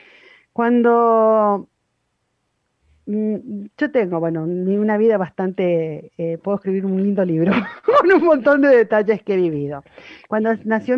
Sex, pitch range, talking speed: female, 170-215 Hz, 125 wpm